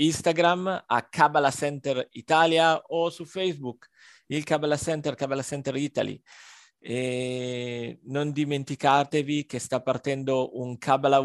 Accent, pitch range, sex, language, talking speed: native, 130-160 Hz, male, Italian, 115 wpm